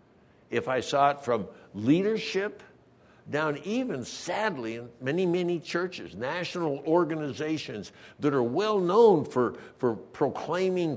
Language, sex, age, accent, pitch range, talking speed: English, male, 60-79, American, 130-180 Hz, 120 wpm